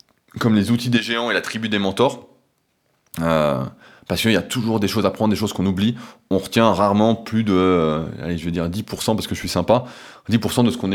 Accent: French